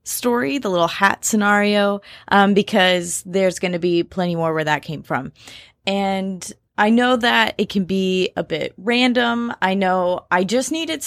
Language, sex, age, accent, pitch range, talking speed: English, female, 20-39, American, 170-225 Hz, 175 wpm